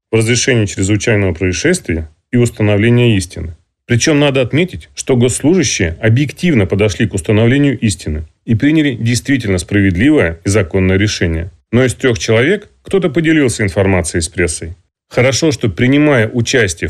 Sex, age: male, 30-49